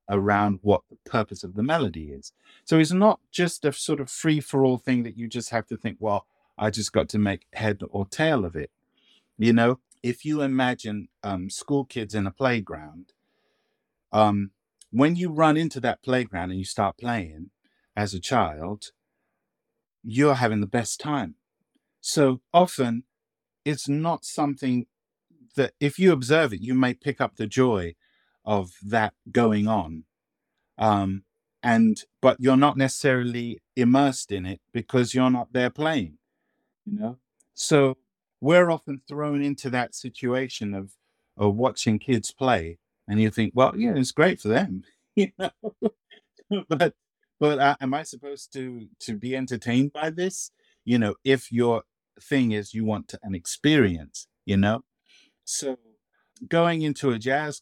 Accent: British